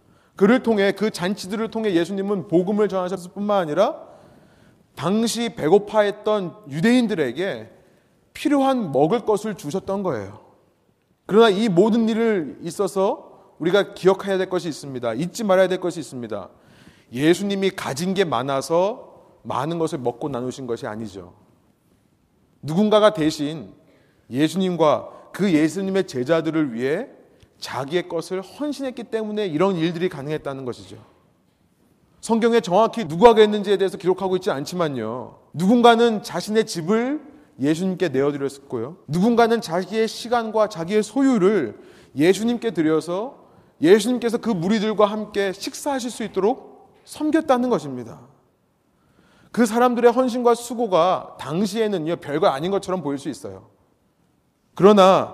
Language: Korean